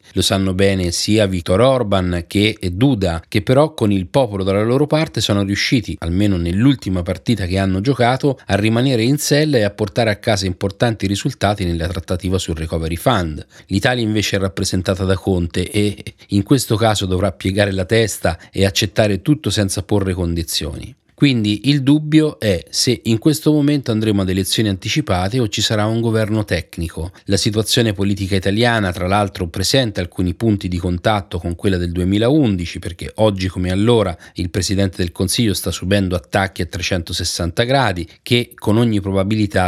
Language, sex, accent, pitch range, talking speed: Italian, male, native, 90-110 Hz, 170 wpm